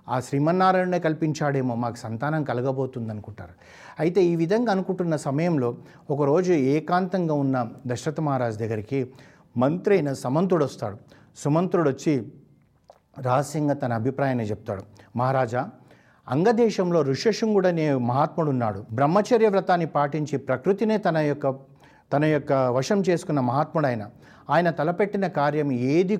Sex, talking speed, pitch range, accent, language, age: male, 105 wpm, 125-160 Hz, native, Telugu, 60-79